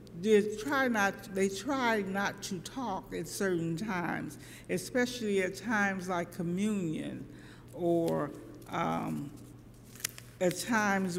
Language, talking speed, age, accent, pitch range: English, 105 wpm, 50-69, American, 170-235 Hz